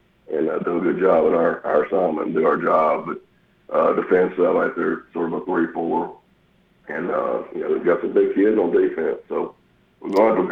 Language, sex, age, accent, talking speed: English, male, 50-69, American, 220 wpm